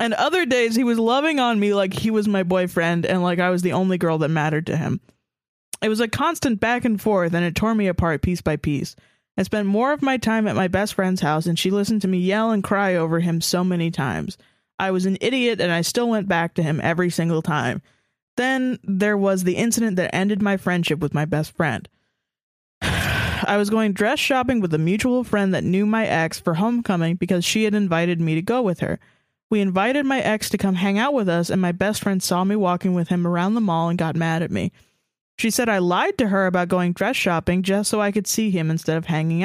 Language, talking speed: English, 245 wpm